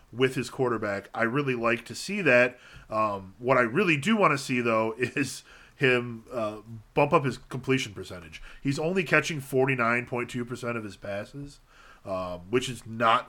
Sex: male